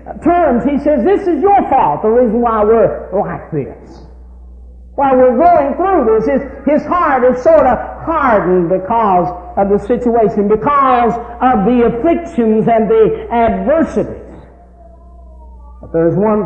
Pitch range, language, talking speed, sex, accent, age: 185-265 Hz, English, 140 wpm, male, American, 50-69